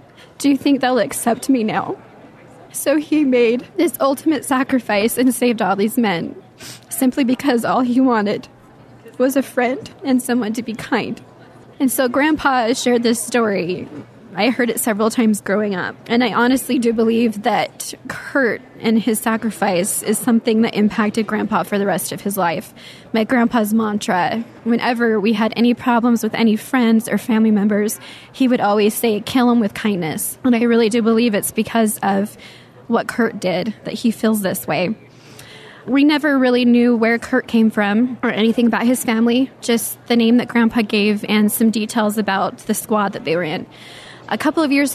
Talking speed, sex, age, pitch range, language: 180 wpm, female, 10-29, 210-245 Hz, English